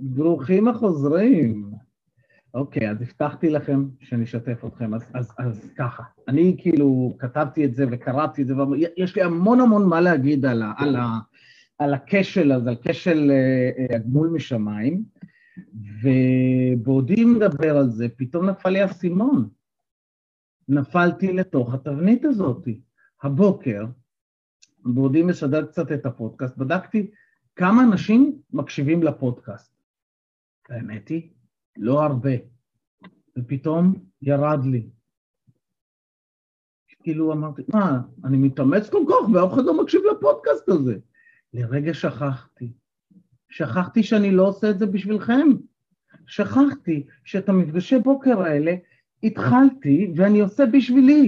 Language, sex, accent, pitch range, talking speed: Hebrew, male, native, 130-205 Hz, 115 wpm